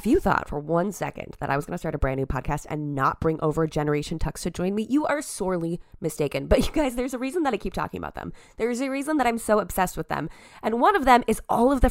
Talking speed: 290 wpm